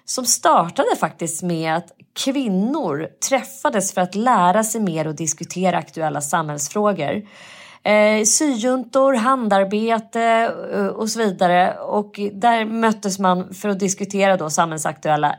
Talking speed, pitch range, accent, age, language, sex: 115 wpm, 170-230 Hz, native, 30-49, Swedish, female